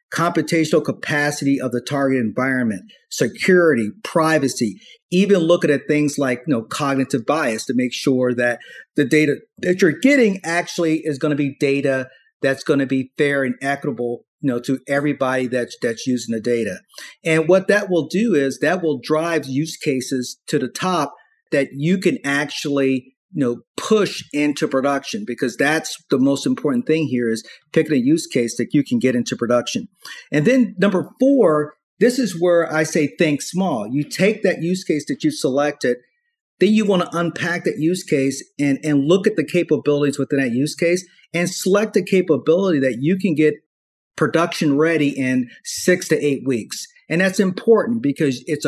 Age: 40-59